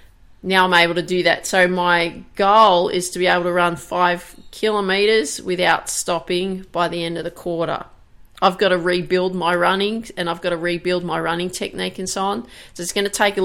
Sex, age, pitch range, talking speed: female, 30-49, 175-195 Hz, 215 wpm